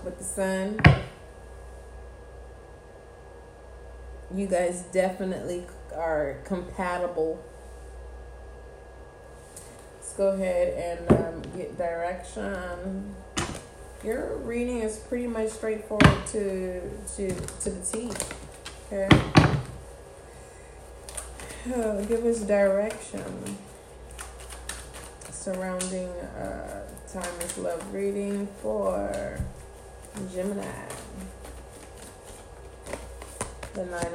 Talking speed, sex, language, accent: 70 wpm, female, English, American